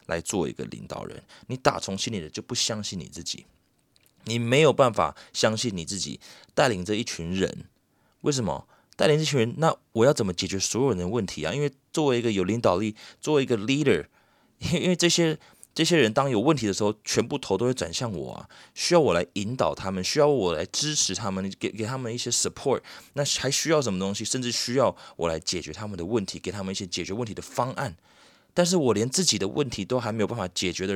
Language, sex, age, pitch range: Chinese, male, 20-39, 90-130 Hz